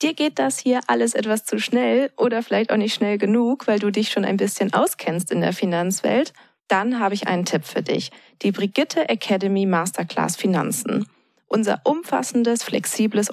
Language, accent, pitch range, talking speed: German, German, 195-245 Hz, 175 wpm